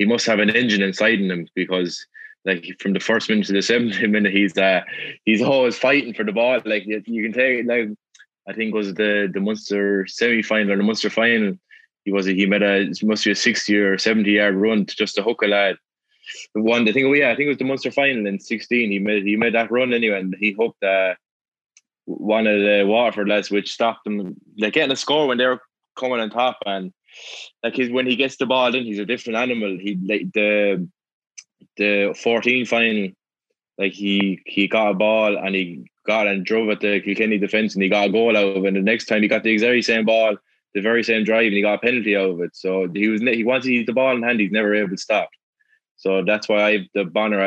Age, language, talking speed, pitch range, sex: 20-39, English, 240 wpm, 100-115 Hz, male